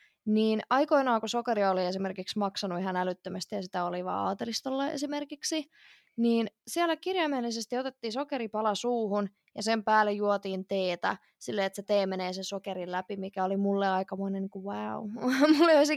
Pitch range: 200-240 Hz